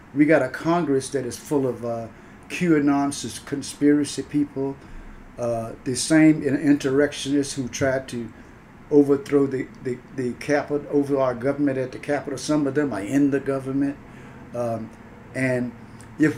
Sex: male